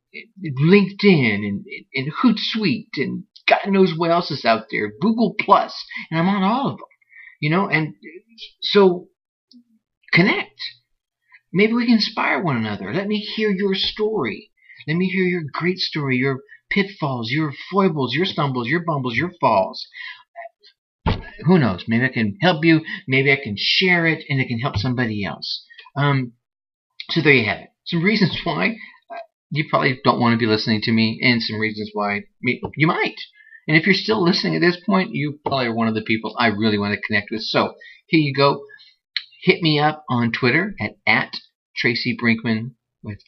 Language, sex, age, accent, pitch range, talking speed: English, male, 50-69, American, 115-195 Hz, 180 wpm